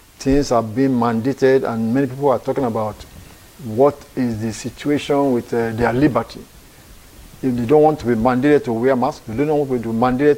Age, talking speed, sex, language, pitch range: 50-69, 195 wpm, male, English, 120-155 Hz